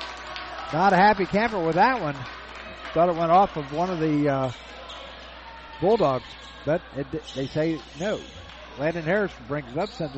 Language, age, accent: English, 50-69, American